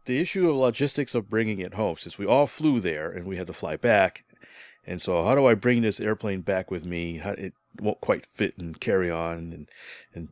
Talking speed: 235 wpm